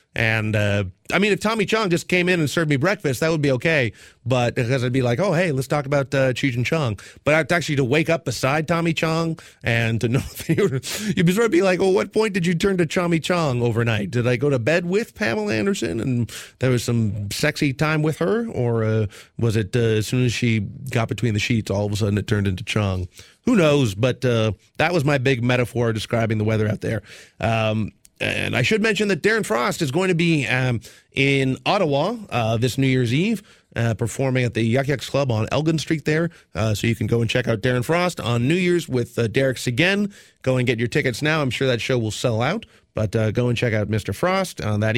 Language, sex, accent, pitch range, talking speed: English, male, American, 110-160 Hz, 240 wpm